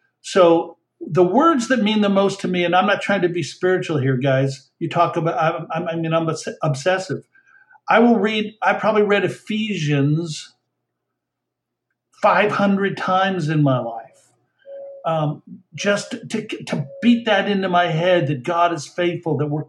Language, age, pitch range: English, 50-69, 155-195 Hz